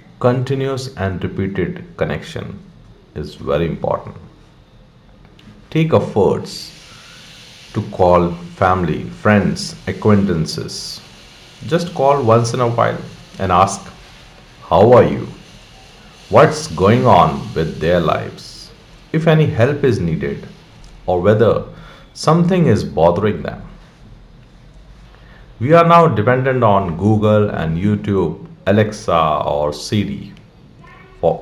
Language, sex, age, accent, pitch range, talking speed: English, male, 50-69, Indian, 95-135 Hz, 105 wpm